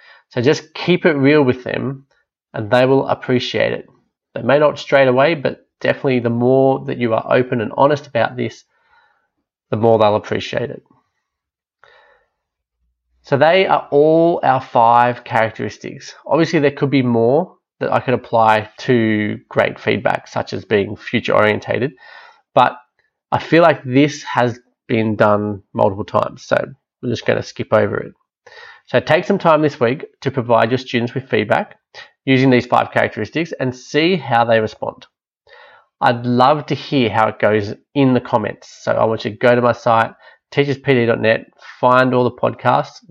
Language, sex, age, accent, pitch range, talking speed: English, male, 20-39, Australian, 115-140 Hz, 165 wpm